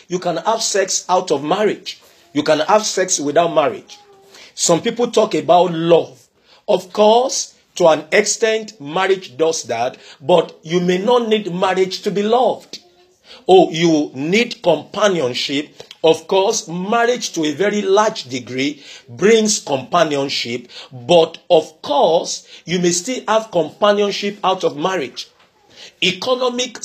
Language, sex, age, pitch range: English, male, 50-69, 160-215 Hz